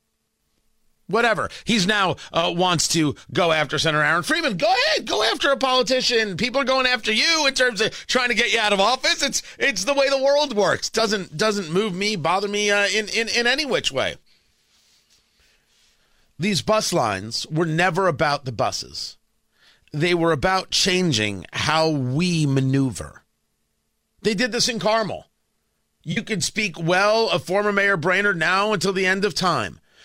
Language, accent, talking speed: English, American, 170 wpm